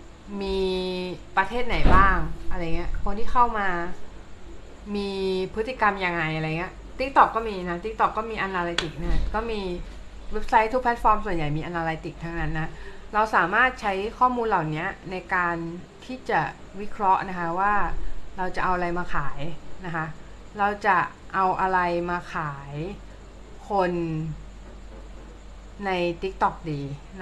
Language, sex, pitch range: Thai, female, 165-205 Hz